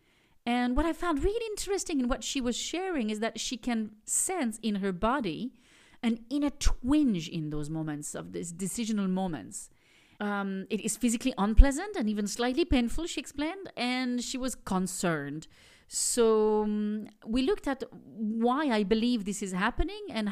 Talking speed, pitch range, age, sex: 165 wpm, 215-260 Hz, 40-59, female